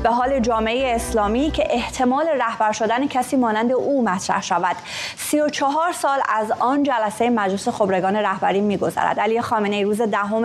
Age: 30-49